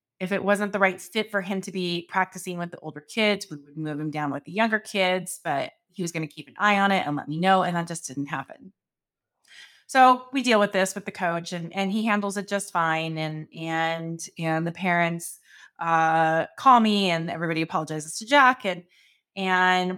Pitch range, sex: 160-205 Hz, female